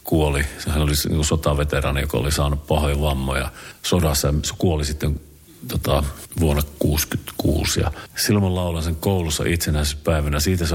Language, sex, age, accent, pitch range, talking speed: Finnish, male, 50-69, native, 75-85 Hz, 130 wpm